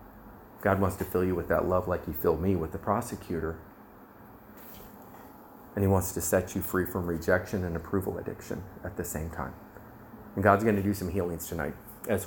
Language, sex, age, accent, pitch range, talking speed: English, male, 30-49, American, 90-110 Hz, 195 wpm